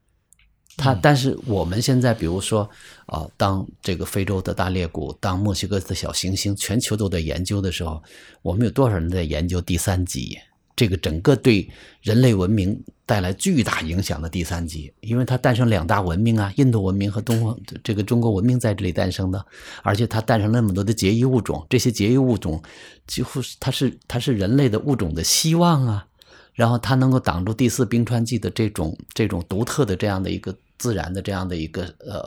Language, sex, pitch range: Chinese, male, 85-120 Hz